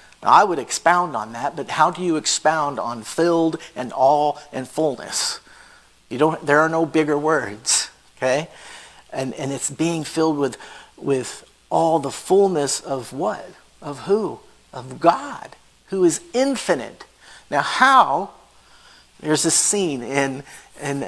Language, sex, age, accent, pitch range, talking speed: English, male, 50-69, American, 135-175 Hz, 145 wpm